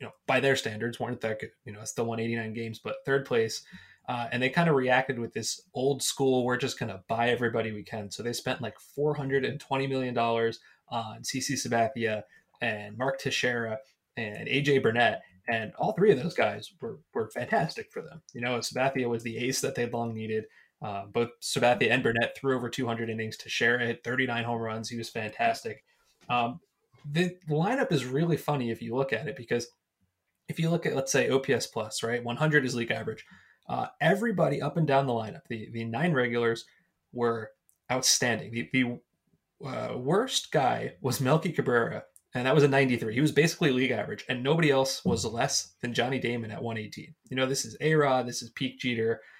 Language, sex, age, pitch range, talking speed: English, male, 20-39, 115-135 Hz, 205 wpm